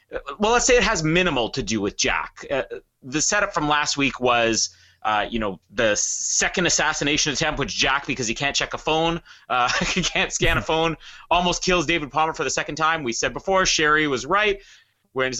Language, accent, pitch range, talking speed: English, American, 130-200 Hz, 210 wpm